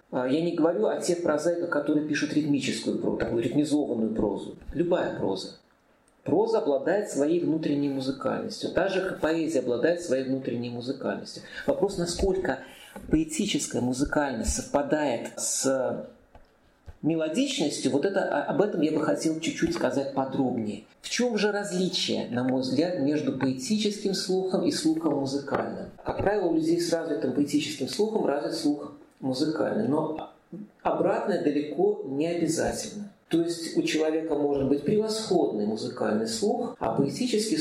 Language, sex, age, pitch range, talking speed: Russian, male, 40-59, 145-230 Hz, 135 wpm